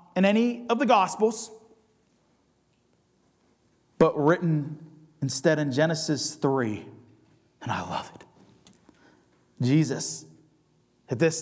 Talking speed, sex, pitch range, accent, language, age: 95 wpm, male, 110-155 Hz, American, English, 40-59